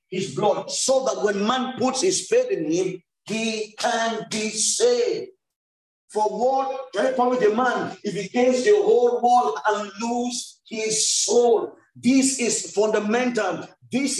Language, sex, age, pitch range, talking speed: English, male, 50-69, 205-260 Hz, 150 wpm